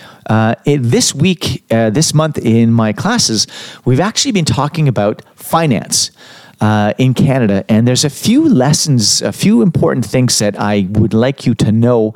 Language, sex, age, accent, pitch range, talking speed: English, male, 40-59, American, 105-150 Hz, 170 wpm